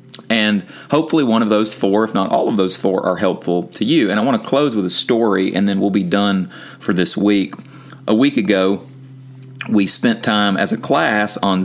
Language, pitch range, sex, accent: English, 95-115 Hz, male, American